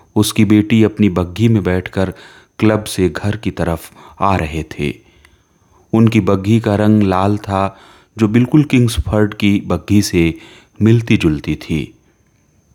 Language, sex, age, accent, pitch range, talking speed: Hindi, male, 30-49, native, 90-110 Hz, 135 wpm